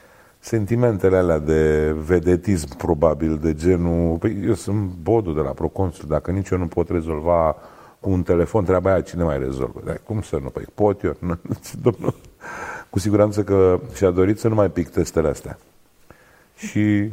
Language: Romanian